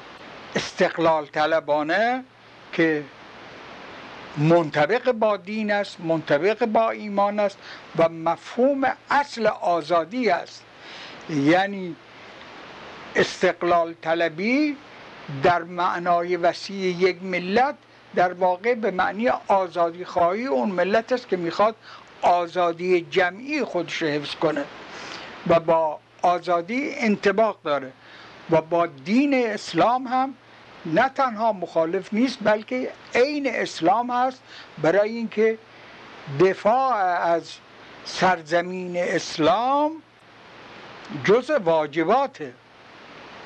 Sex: male